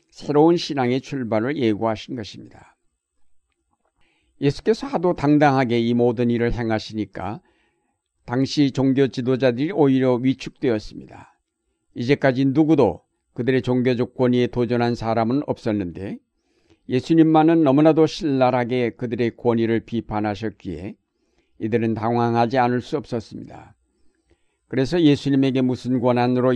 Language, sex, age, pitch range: Korean, male, 60-79, 110-135 Hz